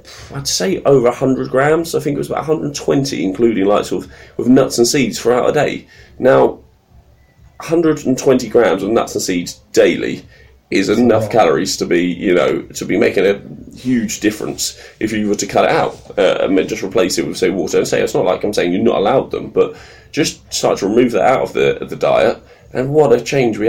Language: English